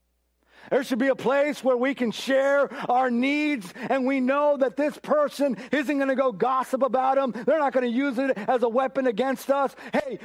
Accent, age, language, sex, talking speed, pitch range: American, 50-69, English, male, 210 wpm, 195-280 Hz